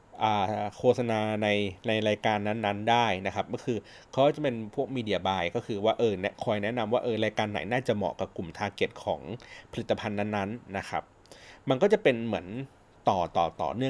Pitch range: 100-130 Hz